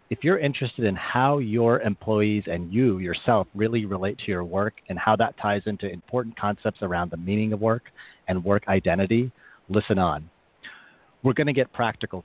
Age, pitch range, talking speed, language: 40-59, 95-115 Hz, 180 wpm, English